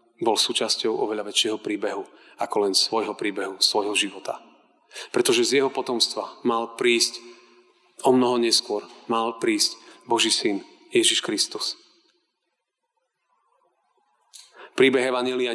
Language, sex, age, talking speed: Slovak, male, 30-49, 110 wpm